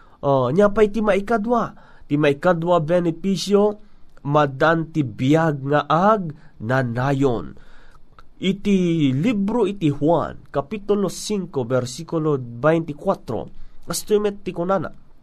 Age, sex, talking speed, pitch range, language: 30-49, male, 95 wpm, 150-195 Hz, Filipino